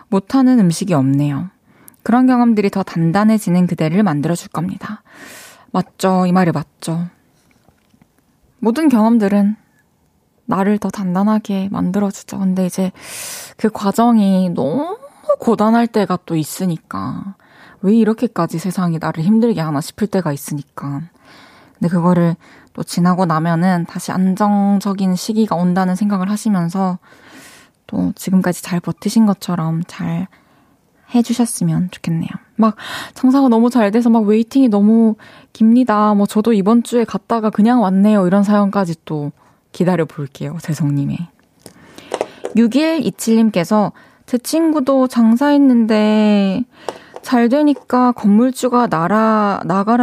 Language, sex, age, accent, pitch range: Korean, female, 20-39, native, 180-230 Hz